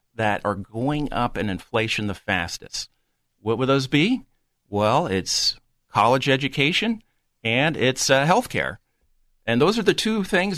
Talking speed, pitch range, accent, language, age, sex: 145 wpm, 110-155 Hz, American, English, 50-69, male